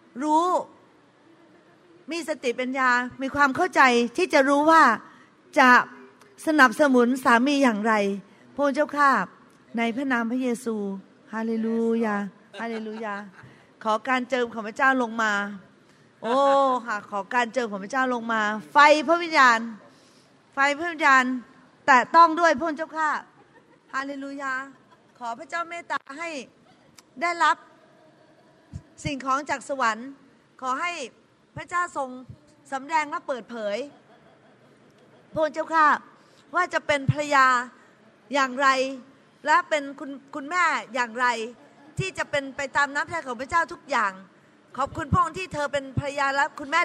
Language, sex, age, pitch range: Thai, female, 30-49, 240-310 Hz